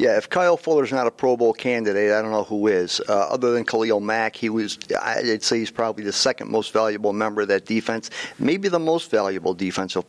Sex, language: male, English